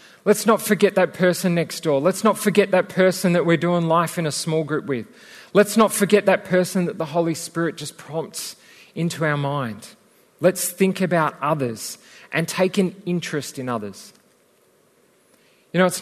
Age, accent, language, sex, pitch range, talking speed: 40-59, Australian, English, male, 135-180 Hz, 180 wpm